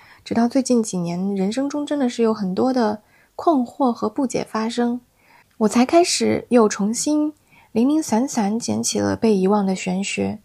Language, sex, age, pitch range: Chinese, female, 20-39, 200-270 Hz